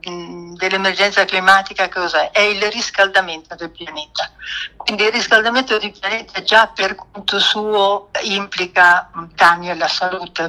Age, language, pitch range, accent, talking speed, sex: 60-79, Italian, 175-210 Hz, native, 120 wpm, female